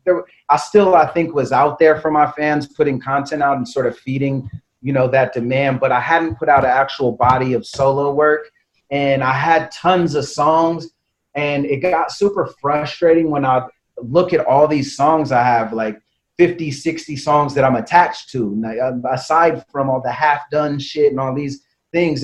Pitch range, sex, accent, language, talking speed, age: 130-160 Hz, male, American, English, 195 wpm, 30-49